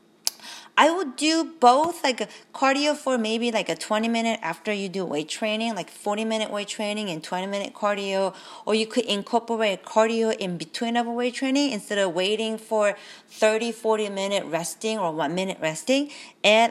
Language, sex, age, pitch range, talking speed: English, female, 30-49, 185-240 Hz, 165 wpm